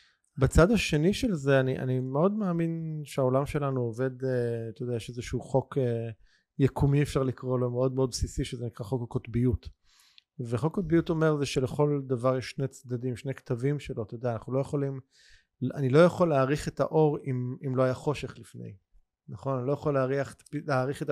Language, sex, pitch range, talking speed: Hebrew, male, 125-150 Hz, 175 wpm